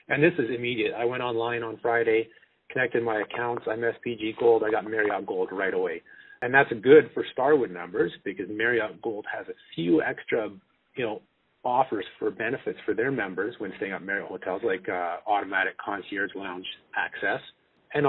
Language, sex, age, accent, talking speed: English, male, 40-59, American, 180 wpm